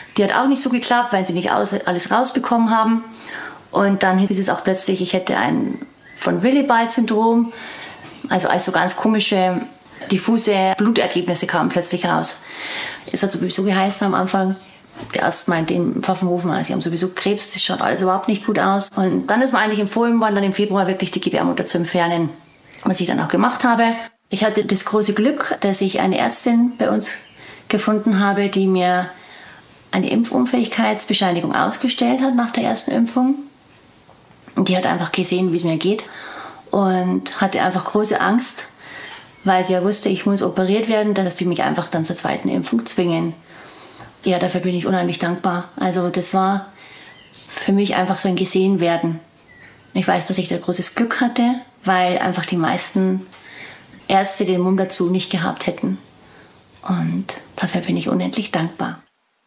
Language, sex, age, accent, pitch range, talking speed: German, female, 30-49, German, 180-225 Hz, 170 wpm